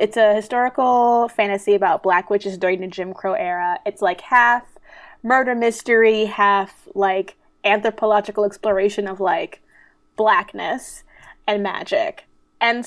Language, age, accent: English, 20-39, American